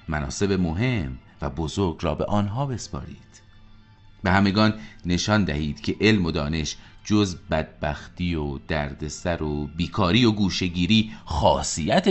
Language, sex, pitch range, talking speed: Persian, male, 80-105 Hz, 125 wpm